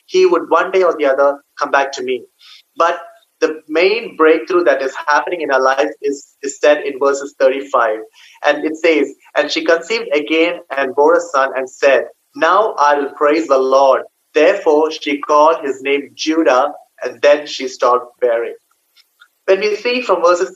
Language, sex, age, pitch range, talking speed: Malayalam, male, 30-49, 145-205 Hz, 180 wpm